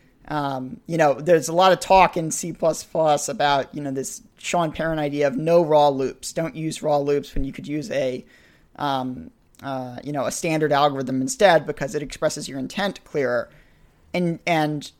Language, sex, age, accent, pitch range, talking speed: English, male, 40-59, American, 155-200 Hz, 185 wpm